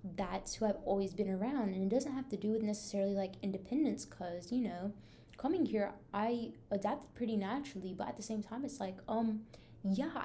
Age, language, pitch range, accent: 20-39, English, 195-250 Hz, American